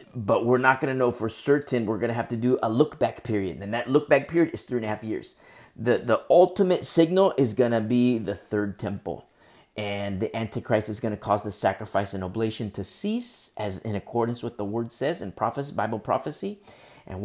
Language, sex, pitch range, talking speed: English, male, 105-135 Hz, 220 wpm